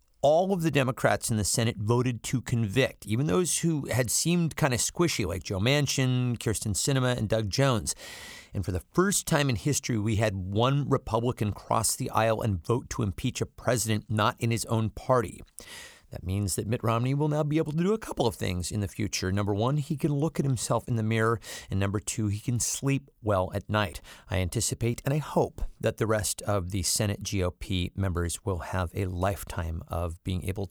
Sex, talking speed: male, 210 wpm